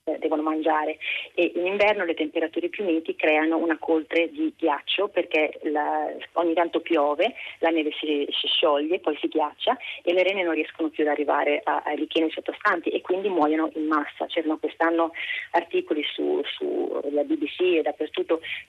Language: Italian